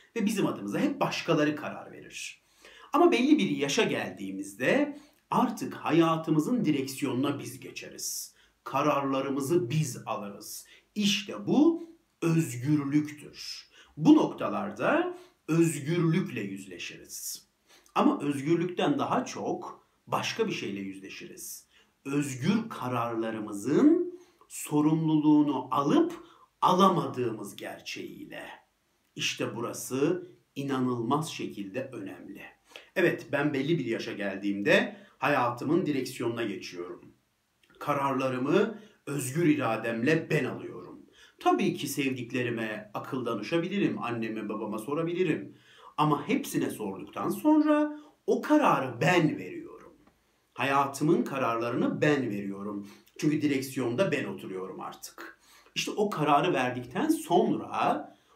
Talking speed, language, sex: 95 wpm, Turkish, male